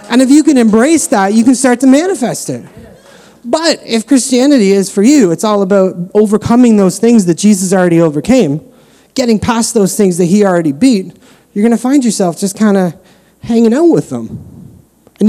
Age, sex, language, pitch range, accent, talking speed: 30-49, male, English, 160-220 Hz, American, 190 wpm